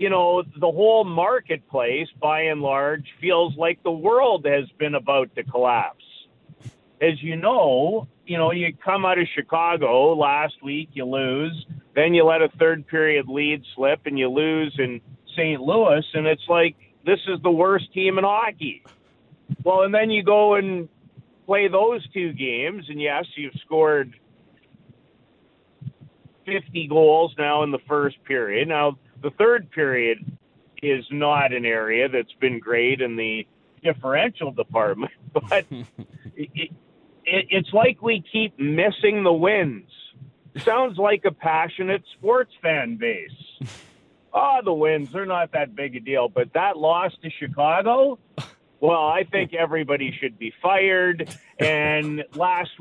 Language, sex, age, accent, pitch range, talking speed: English, male, 50-69, American, 145-190 Hz, 150 wpm